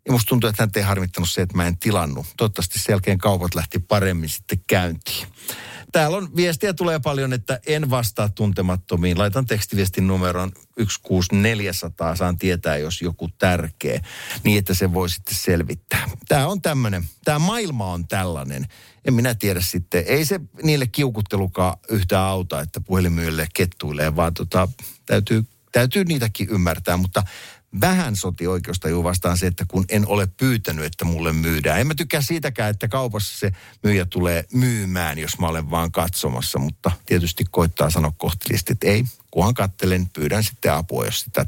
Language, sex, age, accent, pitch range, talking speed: Finnish, male, 50-69, native, 85-120 Hz, 165 wpm